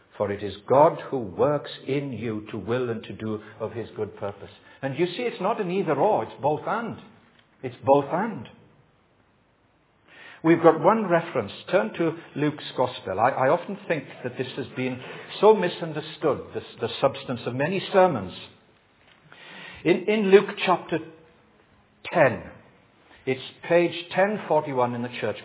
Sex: male